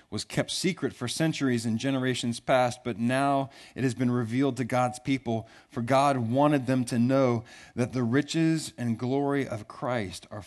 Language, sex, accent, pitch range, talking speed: English, male, American, 120-190 Hz, 180 wpm